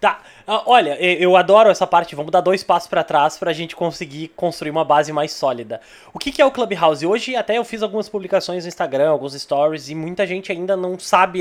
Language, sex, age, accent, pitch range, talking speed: Portuguese, male, 20-39, Brazilian, 160-205 Hz, 220 wpm